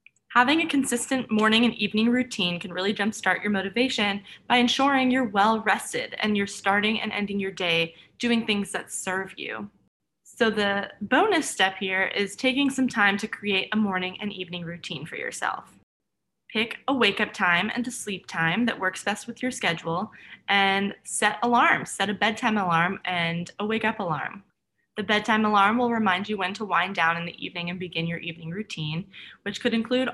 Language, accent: English, American